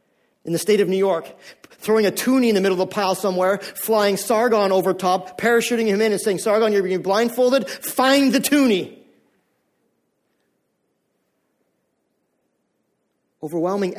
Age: 40-59